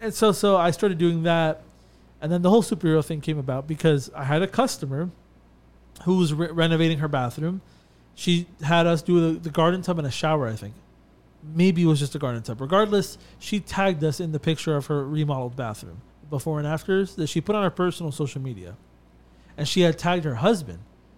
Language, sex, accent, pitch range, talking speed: English, male, American, 145-185 Hz, 210 wpm